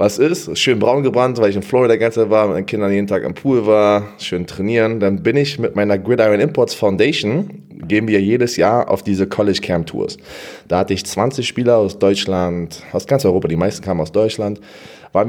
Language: German